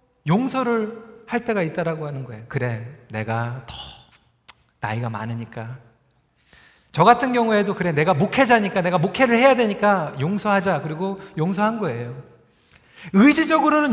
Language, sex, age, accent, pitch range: Korean, male, 40-59, native, 160-250 Hz